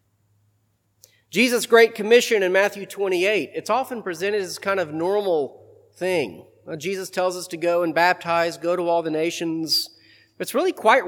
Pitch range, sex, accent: 160-245 Hz, male, American